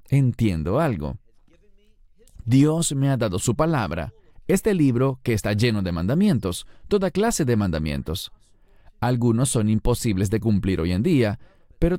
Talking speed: 140 wpm